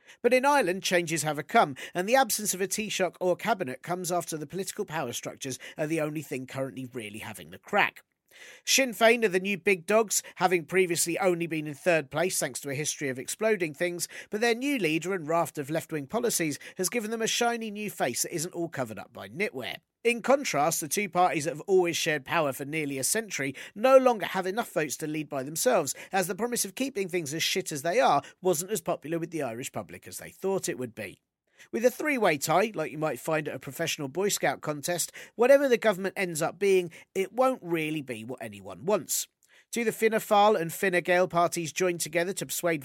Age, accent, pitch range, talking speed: 40-59, British, 155-205 Hz, 225 wpm